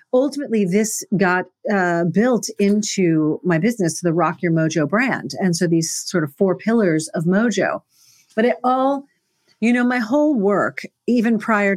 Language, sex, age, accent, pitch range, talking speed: English, female, 40-59, American, 170-225 Hz, 165 wpm